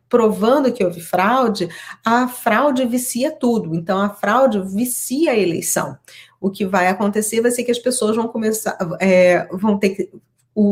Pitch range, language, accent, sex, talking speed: 195-240 Hz, Portuguese, Brazilian, female, 145 wpm